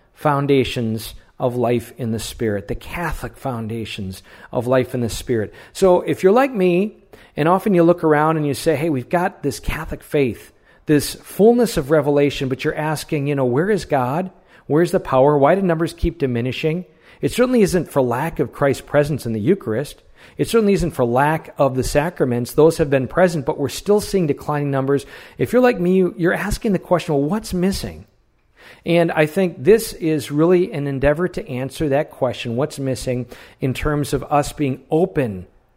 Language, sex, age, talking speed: English, male, 40-59, 190 wpm